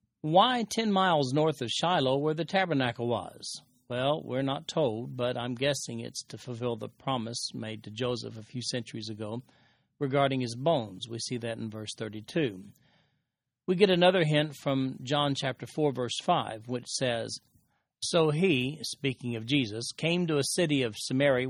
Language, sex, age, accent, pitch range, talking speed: English, male, 40-59, American, 120-150 Hz, 170 wpm